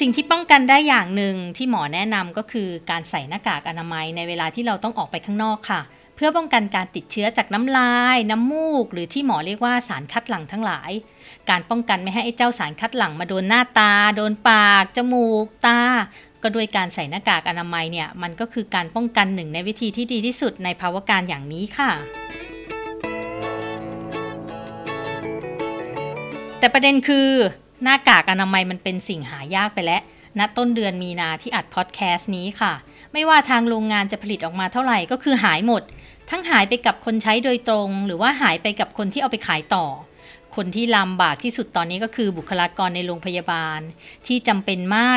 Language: Thai